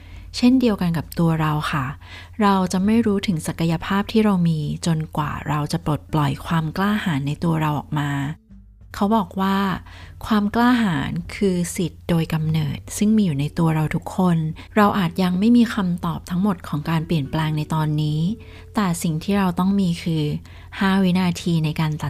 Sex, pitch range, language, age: female, 150-190 Hz, Thai, 20-39